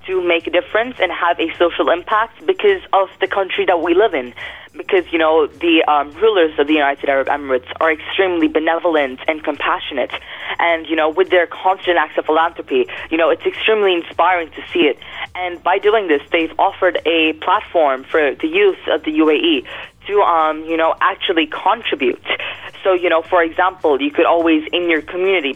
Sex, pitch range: female, 155-195 Hz